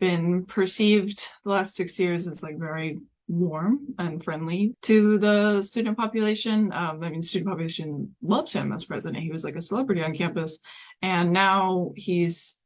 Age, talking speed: 20-39, 165 wpm